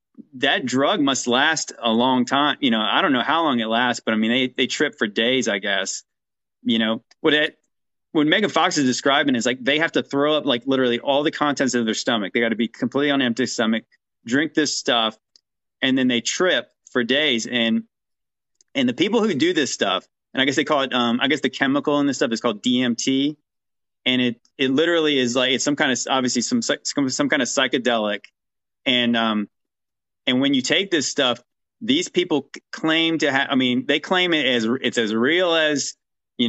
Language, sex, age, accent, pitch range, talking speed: English, male, 30-49, American, 120-170 Hz, 215 wpm